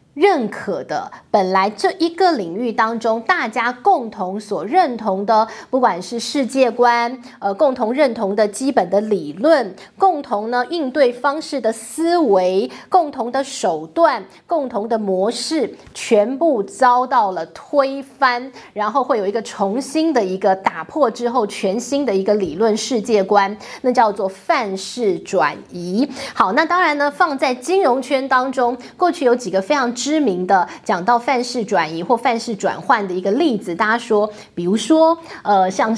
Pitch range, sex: 210-305 Hz, female